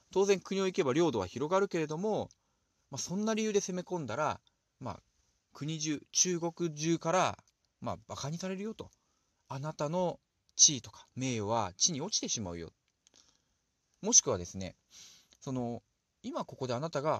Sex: male